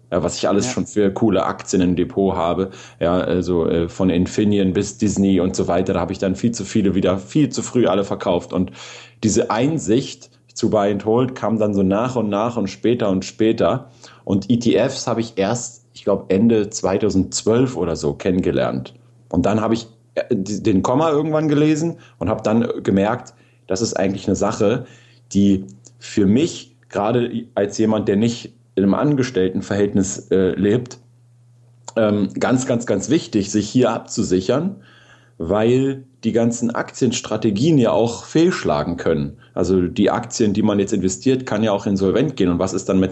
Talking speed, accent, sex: 175 wpm, German, male